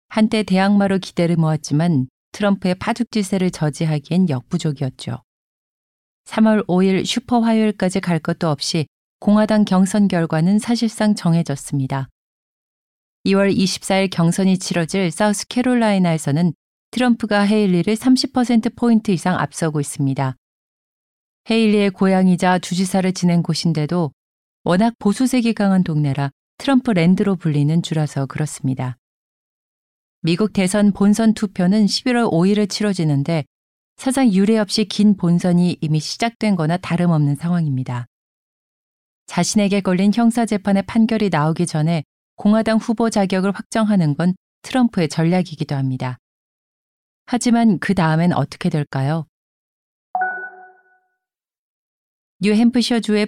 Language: Korean